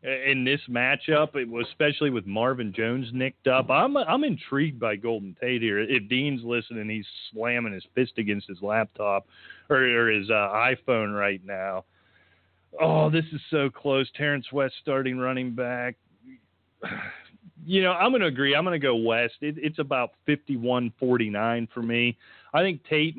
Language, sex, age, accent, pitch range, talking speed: English, male, 40-59, American, 115-135 Hz, 170 wpm